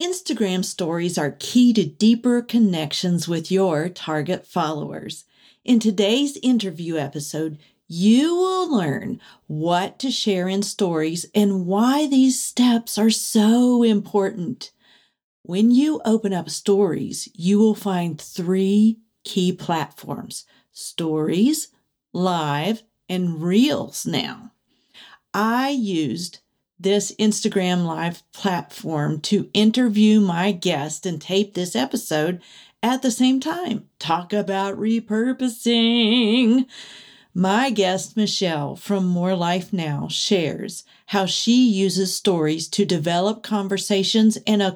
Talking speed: 115 wpm